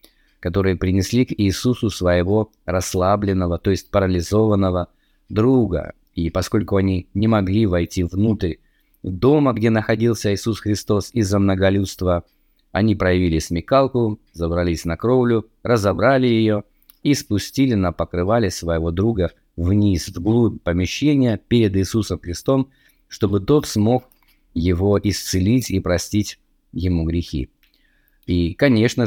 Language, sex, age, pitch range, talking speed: Russian, male, 20-39, 90-115 Hz, 115 wpm